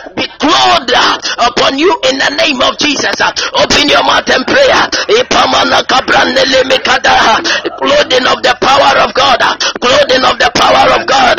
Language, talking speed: English, 185 wpm